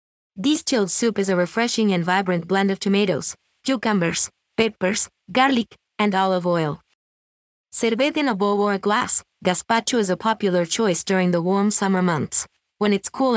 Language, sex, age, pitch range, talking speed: English, female, 20-39, 180-220 Hz, 165 wpm